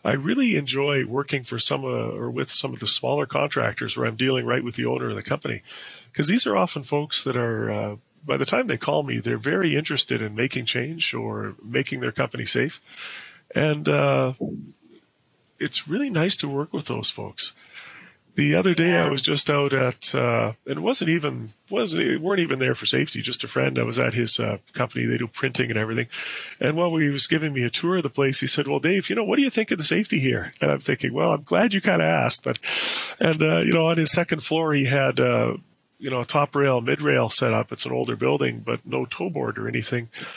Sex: male